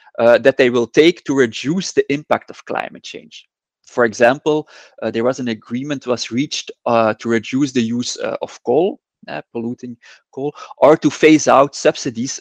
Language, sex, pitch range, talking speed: English, male, 115-140 Hz, 180 wpm